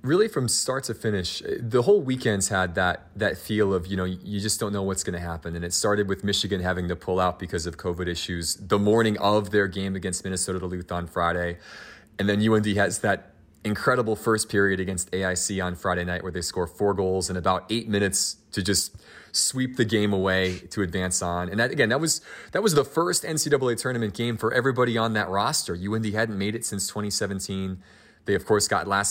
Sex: male